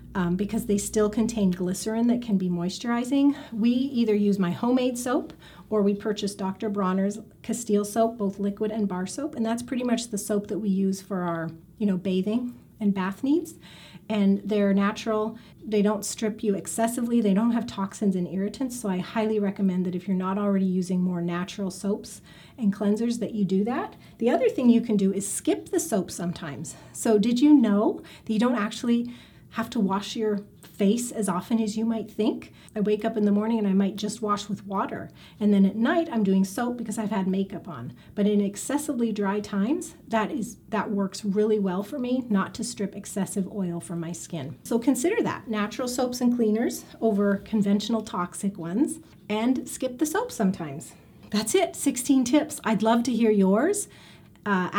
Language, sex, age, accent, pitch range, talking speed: English, female, 30-49, American, 195-230 Hz, 195 wpm